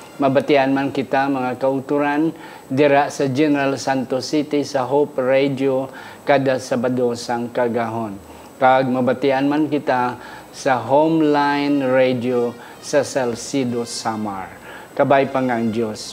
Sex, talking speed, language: male, 110 wpm, Filipino